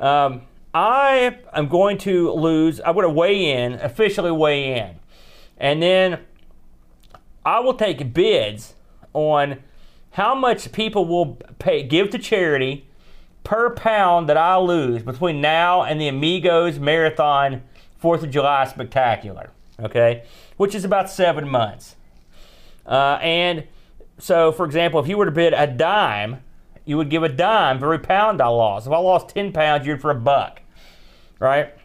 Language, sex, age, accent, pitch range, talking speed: English, male, 40-59, American, 130-185 Hz, 155 wpm